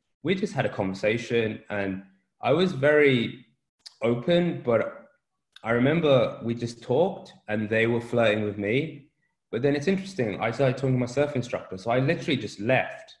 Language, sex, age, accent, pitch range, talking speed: English, male, 20-39, British, 95-115 Hz, 175 wpm